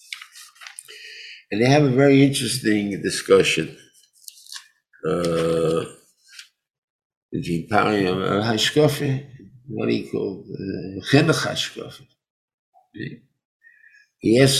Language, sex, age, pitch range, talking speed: English, male, 60-79, 105-145 Hz, 60 wpm